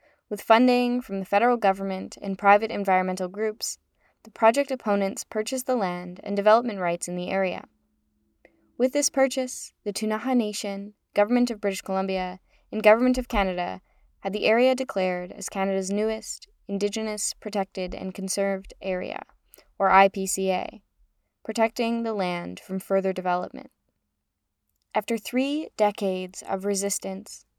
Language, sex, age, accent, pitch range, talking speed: English, female, 10-29, American, 185-220 Hz, 135 wpm